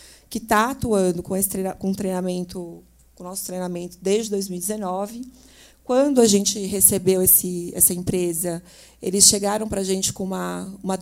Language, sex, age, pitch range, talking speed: Portuguese, female, 30-49, 185-220 Hz, 145 wpm